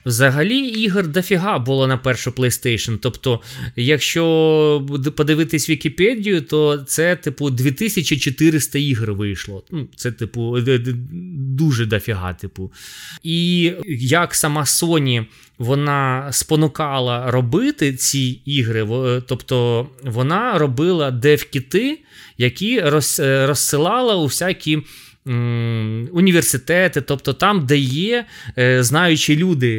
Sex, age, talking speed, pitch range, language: male, 20-39, 95 wpm, 120-165 Hz, Ukrainian